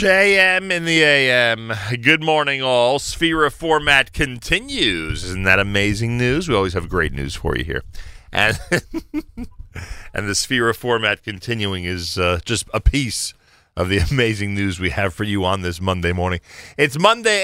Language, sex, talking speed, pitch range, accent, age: English, male, 170 wpm, 90-130 Hz, American, 40-59